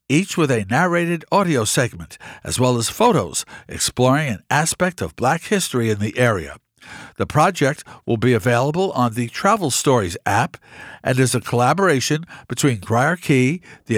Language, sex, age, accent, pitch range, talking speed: English, male, 60-79, American, 115-155 Hz, 160 wpm